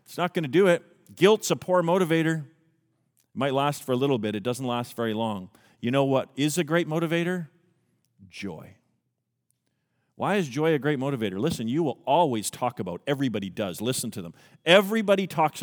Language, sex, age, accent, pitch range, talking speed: English, male, 40-59, American, 125-195 Hz, 190 wpm